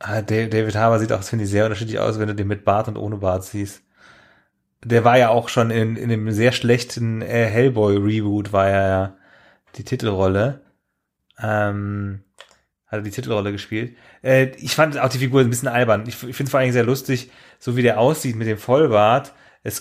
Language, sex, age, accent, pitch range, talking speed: German, male, 30-49, German, 105-125 Hz, 195 wpm